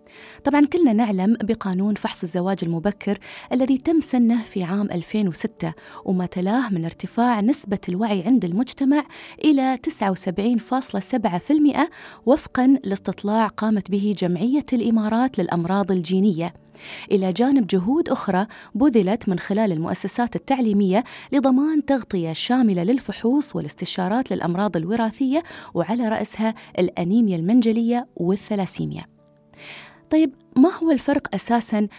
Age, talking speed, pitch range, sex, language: 20-39, 105 wpm, 185-250 Hz, female, Arabic